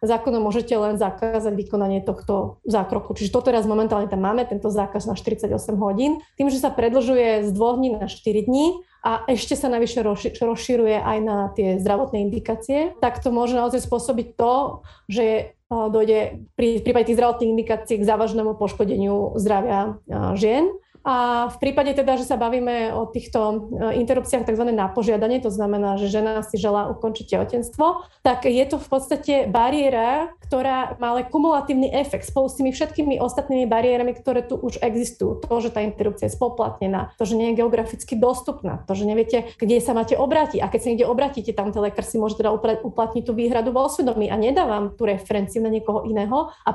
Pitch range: 215-255 Hz